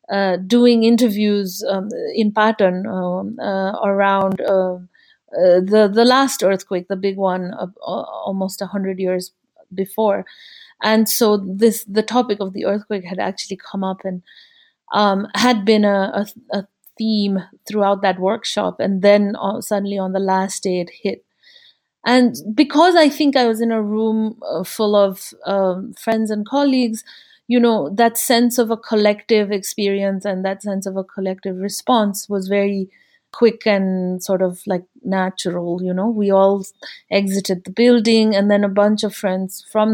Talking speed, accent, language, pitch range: 165 wpm, Indian, English, 195-220 Hz